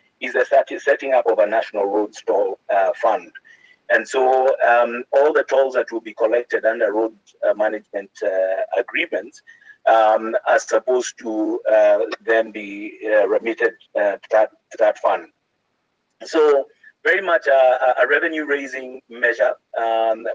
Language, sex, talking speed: English, male, 145 wpm